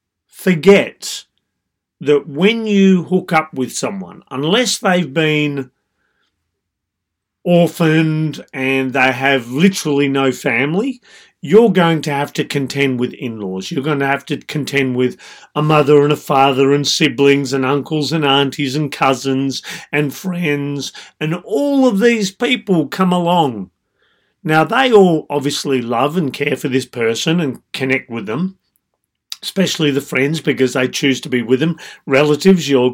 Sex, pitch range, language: male, 130-175 Hz, English